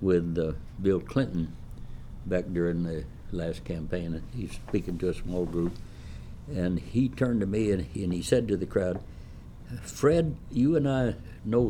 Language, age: English, 60-79